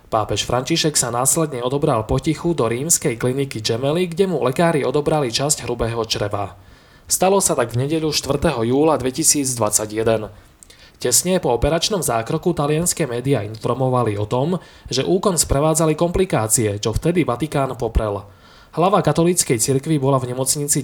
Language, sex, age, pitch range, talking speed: Slovak, male, 20-39, 115-155 Hz, 140 wpm